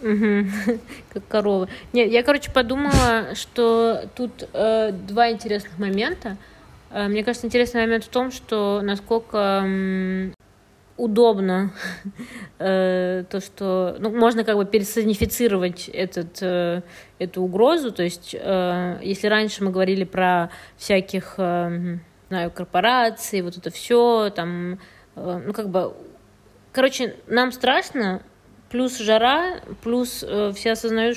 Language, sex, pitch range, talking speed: Russian, female, 185-225 Hz, 125 wpm